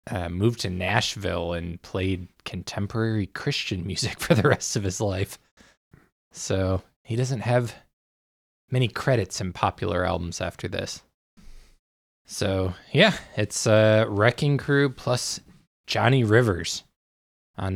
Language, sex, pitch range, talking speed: English, male, 90-115 Hz, 125 wpm